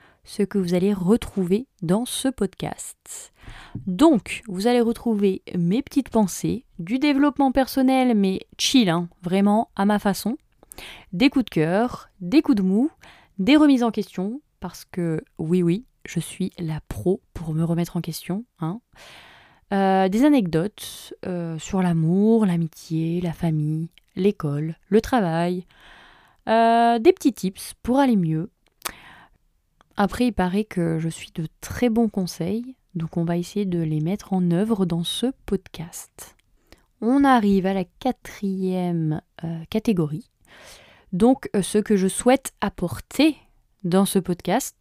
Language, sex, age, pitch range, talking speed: French, female, 20-39, 170-230 Hz, 145 wpm